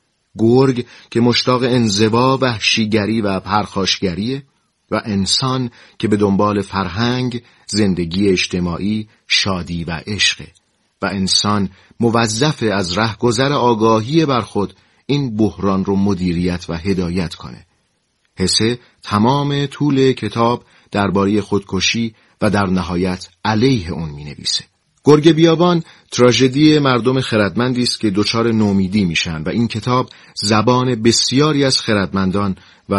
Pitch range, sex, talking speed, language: 95-120 Hz, male, 115 wpm, Persian